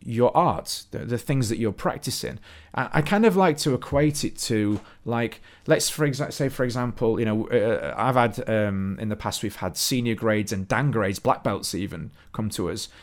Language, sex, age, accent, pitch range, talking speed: English, male, 30-49, British, 110-155 Hz, 210 wpm